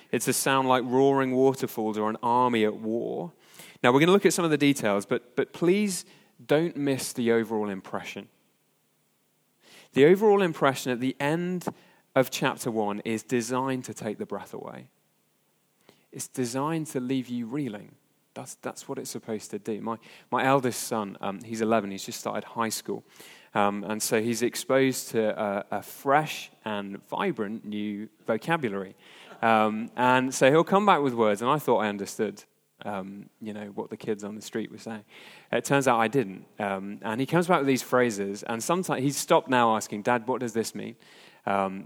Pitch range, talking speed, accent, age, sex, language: 110-135 Hz, 190 wpm, British, 30-49, male, English